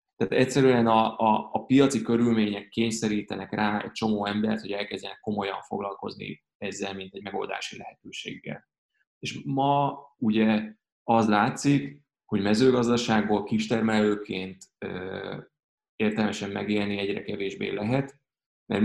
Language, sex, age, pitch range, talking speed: Hungarian, male, 20-39, 100-115 Hz, 115 wpm